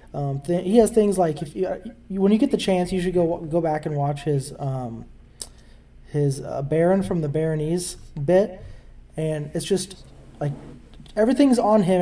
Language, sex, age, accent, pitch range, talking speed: English, male, 20-39, American, 150-185 Hz, 190 wpm